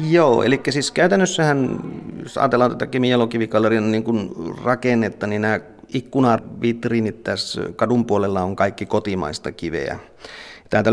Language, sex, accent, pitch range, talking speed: Finnish, male, native, 110-125 Hz, 115 wpm